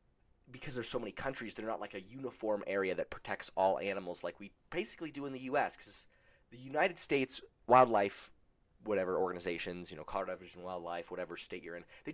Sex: male